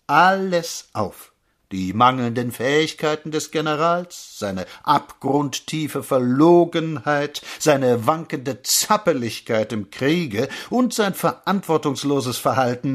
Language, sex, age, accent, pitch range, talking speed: German, male, 60-79, German, 135-210 Hz, 90 wpm